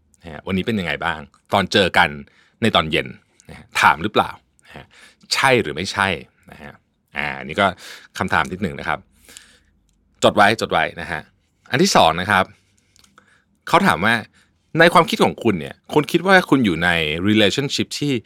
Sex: male